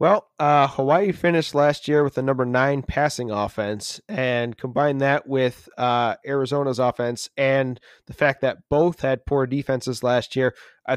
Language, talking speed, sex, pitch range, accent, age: English, 165 wpm, male, 125-145 Hz, American, 30-49